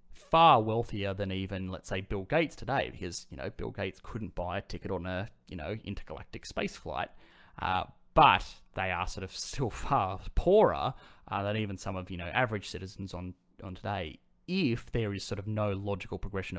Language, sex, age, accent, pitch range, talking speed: English, male, 20-39, Australian, 95-115 Hz, 195 wpm